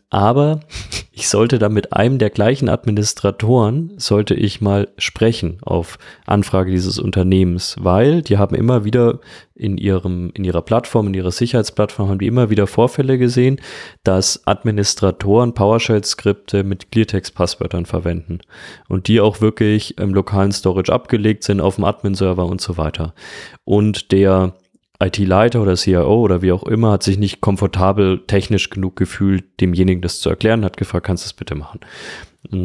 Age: 30-49